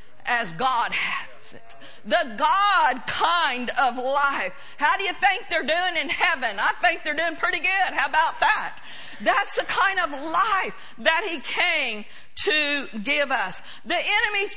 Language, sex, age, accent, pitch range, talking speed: English, female, 50-69, American, 275-355 Hz, 160 wpm